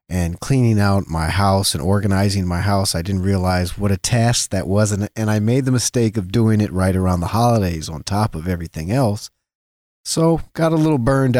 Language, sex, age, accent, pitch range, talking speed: English, male, 40-59, American, 95-120 Hz, 205 wpm